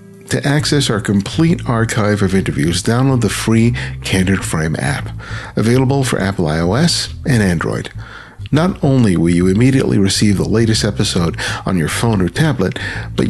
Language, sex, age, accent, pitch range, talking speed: English, male, 50-69, American, 100-125 Hz, 155 wpm